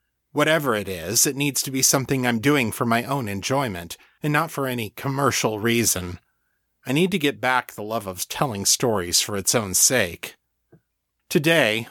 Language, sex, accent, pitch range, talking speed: English, male, American, 105-145 Hz, 175 wpm